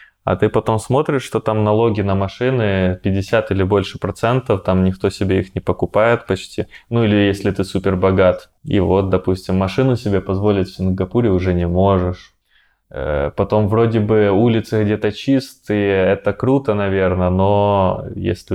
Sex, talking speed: male, 155 wpm